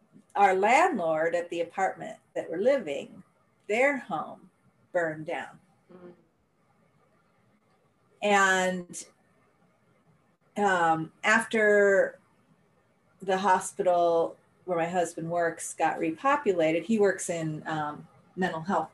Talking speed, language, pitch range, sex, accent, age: 90 wpm, English, 165-200 Hz, female, American, 40-59